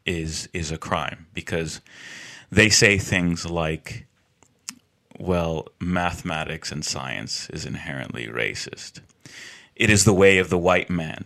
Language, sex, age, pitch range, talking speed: English, male, 30-49, 85-100 Hz, 130 wpm